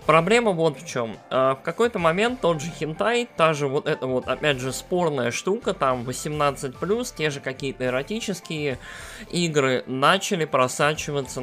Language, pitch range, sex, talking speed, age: Russian, 130-170 Hz, male, 145 wpm, 20-39